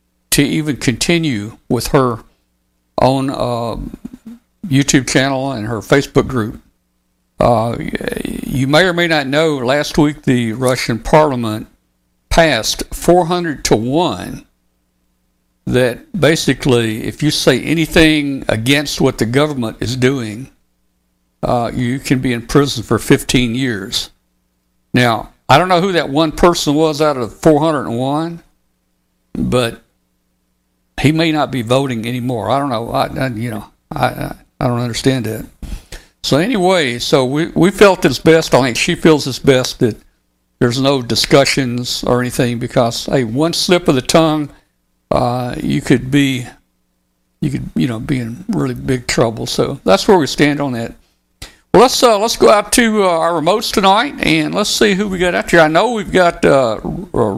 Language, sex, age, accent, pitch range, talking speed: English, male, 60-79, American, 110-155 Hz, 160 wpm